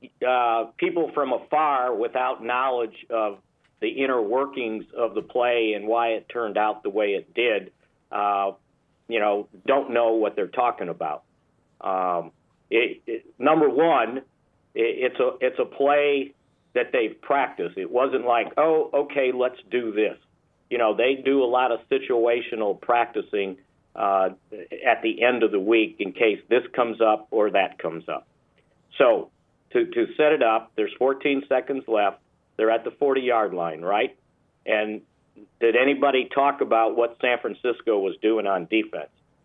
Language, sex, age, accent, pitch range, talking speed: English, male, 50-69, American, 110-145 Hz, 155 wpm